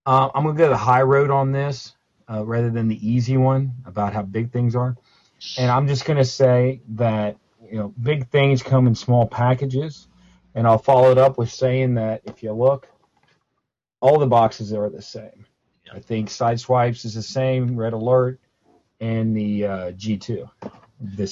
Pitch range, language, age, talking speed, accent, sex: 110-130 Hz, English, 40-59, 190 wpm, American, male